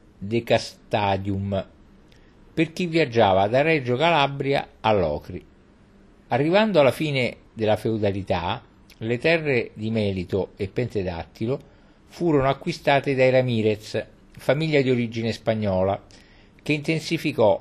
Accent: native